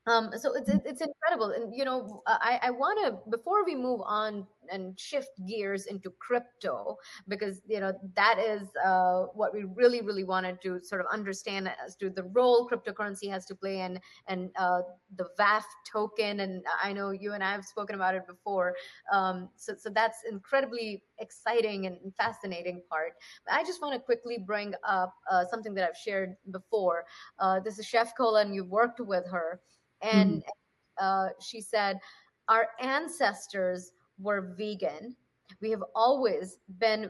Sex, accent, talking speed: female, Indian, 170 wpm